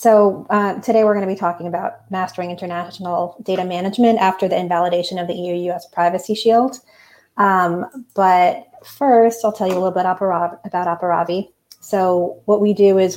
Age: 30-49